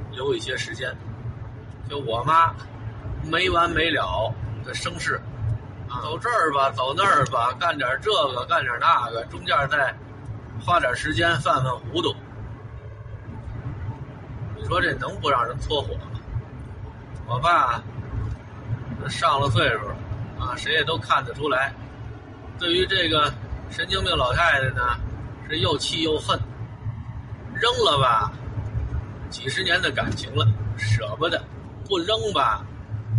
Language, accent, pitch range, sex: Chinese, native, 110-125 Hz, male